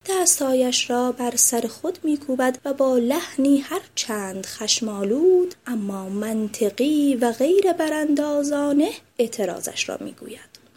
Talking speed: 110 wpm